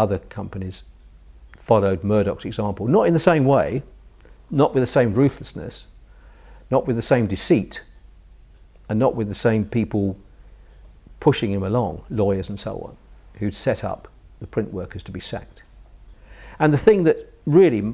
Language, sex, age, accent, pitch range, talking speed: English, male, 50-69, British, 95-125 Hz, 155 wpm